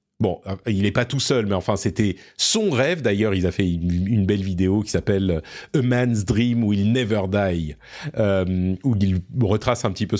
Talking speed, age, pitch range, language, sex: 210 wpm, 40-59, 110-155 Hz, French, male